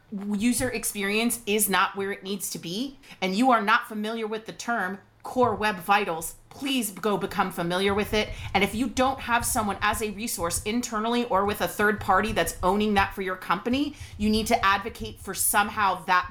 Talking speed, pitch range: 200 wpm, 195-240 Hz